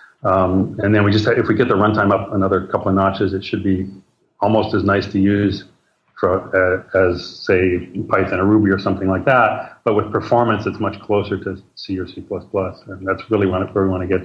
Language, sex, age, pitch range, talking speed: English, male, 40-59, 95-110 Hz, 215 wpm